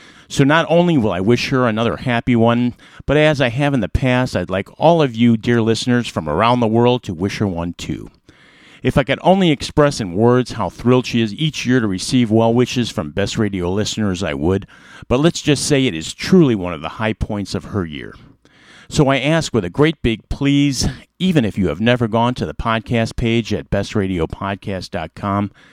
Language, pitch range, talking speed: English, 100-135 Hz, 210 wpm